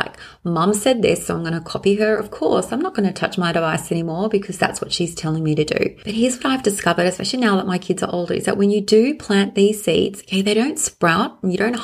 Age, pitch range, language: 30-49, 180-215 Hz, English